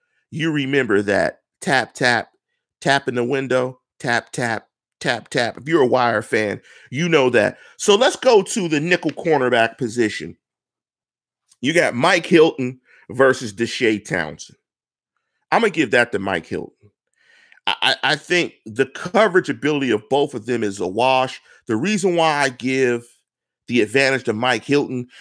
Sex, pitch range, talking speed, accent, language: male, 115-145 Hz, 160 wpm, American, English